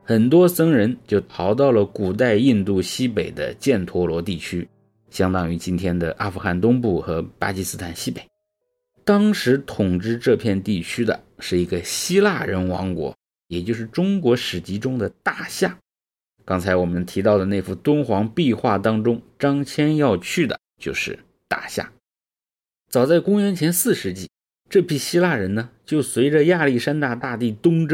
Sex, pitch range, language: male, 95-140 Hz, English